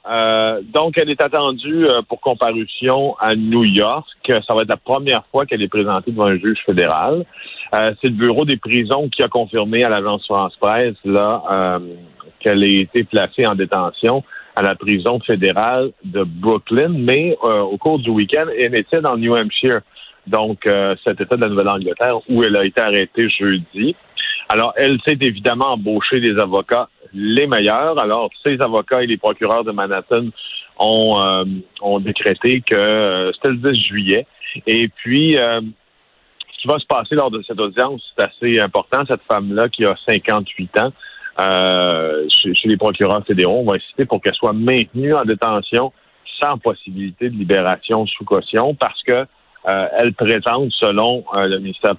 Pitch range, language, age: 100-120 Hz, French, 50-69